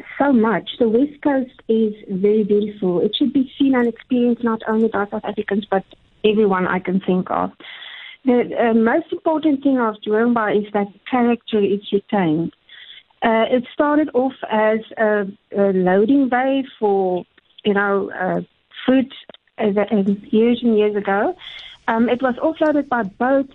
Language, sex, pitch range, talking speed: English, female, 205-255 Hz, 155 wpm